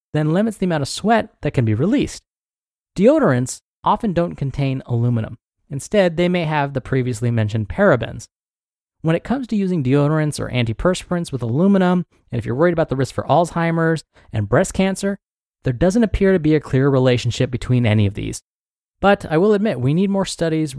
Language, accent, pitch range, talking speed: English, American, 125-180 Hz, 190 wpm